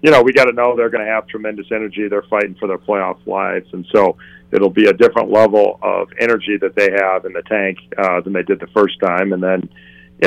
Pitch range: 95-120 Hz